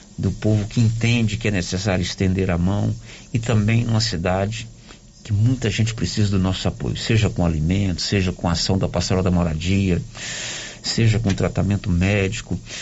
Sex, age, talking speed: male, 50-69, 170 wpm